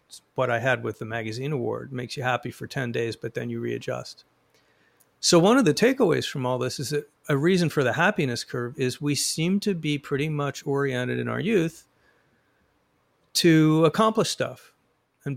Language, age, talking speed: English, 50-69, 195 wpm